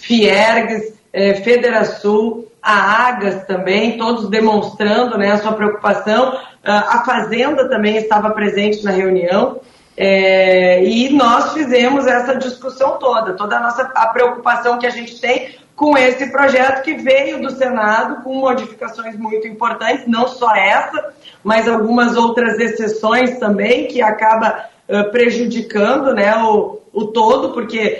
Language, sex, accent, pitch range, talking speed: Portuguese, female, Brazilian, 215-255 Hz, 135 wpm